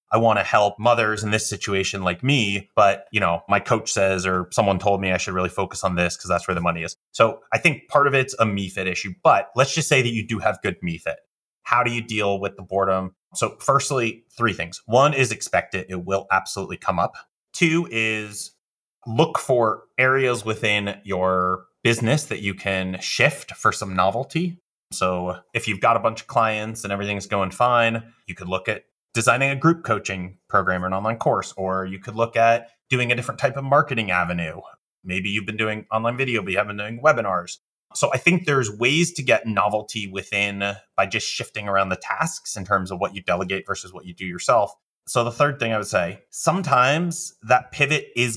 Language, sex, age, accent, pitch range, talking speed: English, male, 30-49, American, 95-120 Hz, 215 wpm